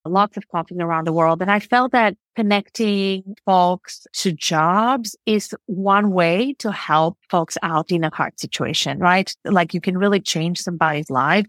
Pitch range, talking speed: 165-200 Hz, 170 wpm